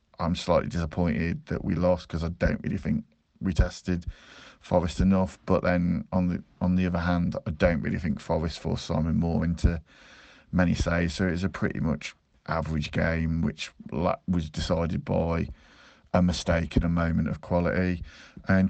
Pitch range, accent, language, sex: 80-90 Hz, British, English, male